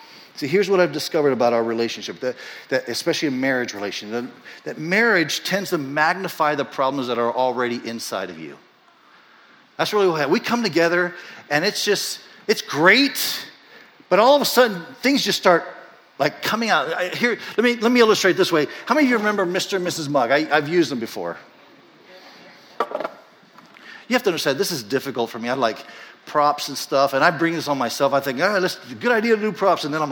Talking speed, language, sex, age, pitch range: 205 wpm, English, male, 50-69, 140-190 Hz